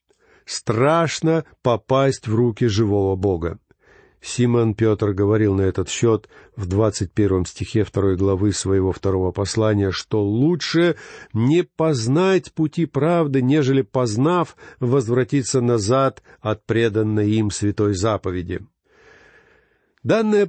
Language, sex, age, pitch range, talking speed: Russian, male, 50-69, 115-165 Hz, 105 wpm